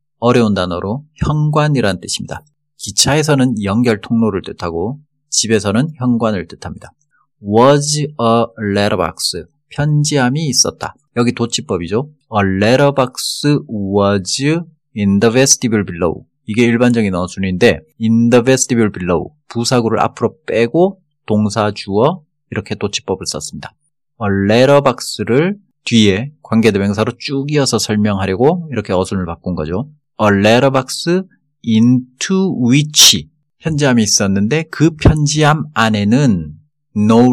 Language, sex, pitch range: Korean, male, 105-150 Hz